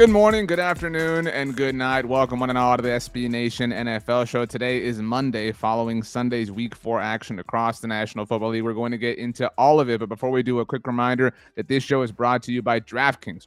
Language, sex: English, male